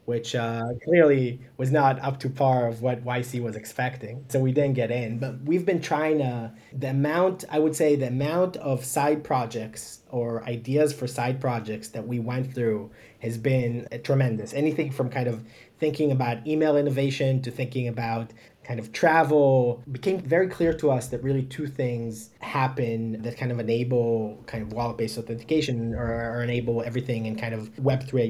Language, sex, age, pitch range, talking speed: English, male, 20-39, 115-140 Hz, 185 wpm